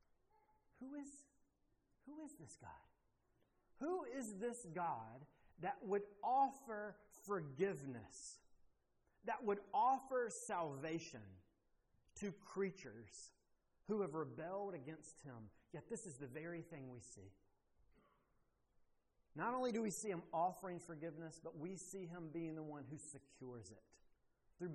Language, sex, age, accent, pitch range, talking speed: English, male, 40-59, American, 145-205 Hz, 125 wpm